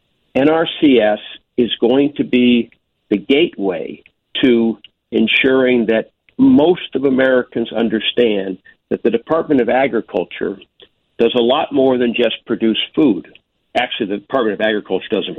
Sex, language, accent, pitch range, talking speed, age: male, English, American, 110-135 Hz, 130 wpm, 60-79